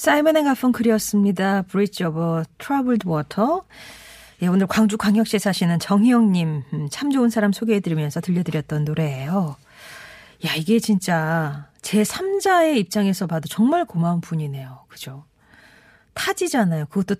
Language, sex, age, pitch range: Korean, female, 40-59, 160-230 Hz